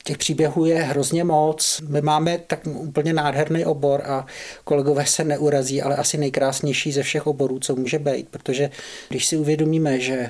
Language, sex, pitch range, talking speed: Czech, male, 130-150 Hz, 170 wpm